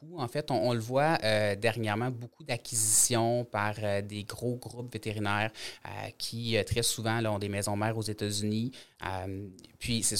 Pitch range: 105-120 Hz